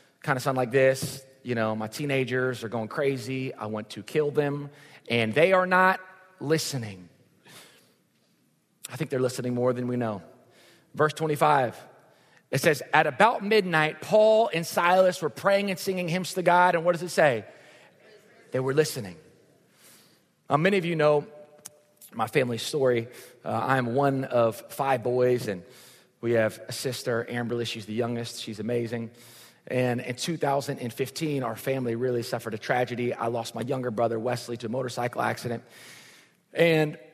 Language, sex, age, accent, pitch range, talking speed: English, male, 30-49, American, 115-150 Hz, 160 wpm